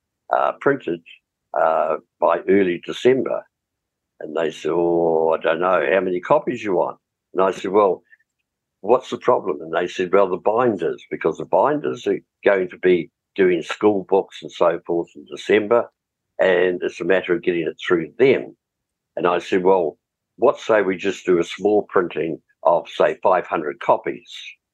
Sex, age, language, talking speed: male, 60-79, English, 170 wpm